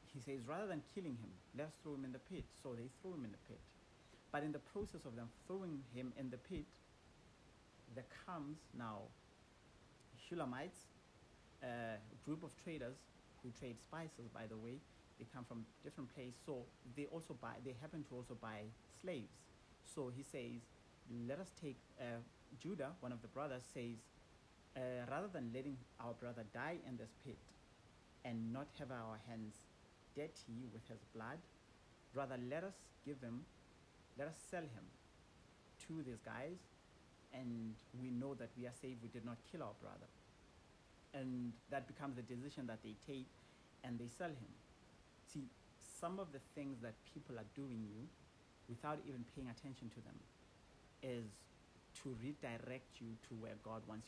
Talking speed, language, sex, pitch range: 170 wpm, English, male, 115-140 Hz